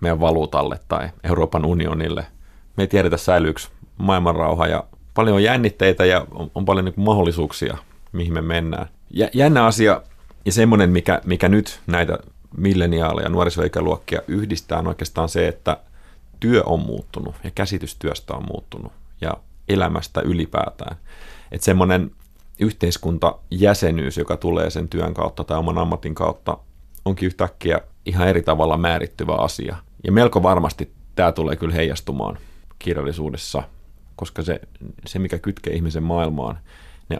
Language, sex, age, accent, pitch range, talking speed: Finnish, male, 30-49, native, 80-95 Hz, 130 wpm